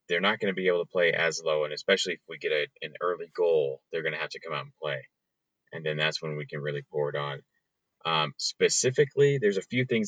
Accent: American